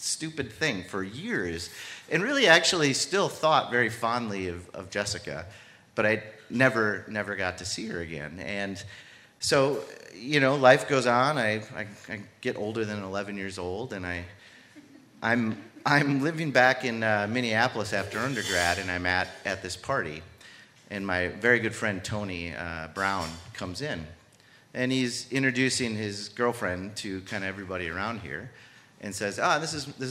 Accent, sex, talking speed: American, male, 165 wpm